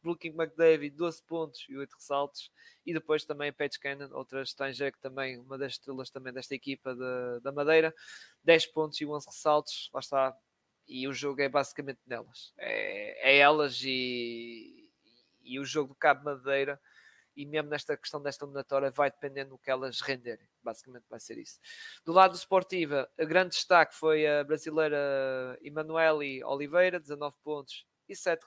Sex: male